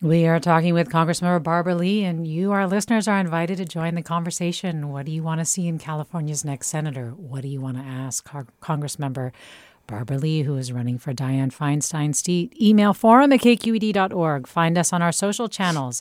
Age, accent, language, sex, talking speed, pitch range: 40-59, American, English, female, 195 wpm, 150-195 Hz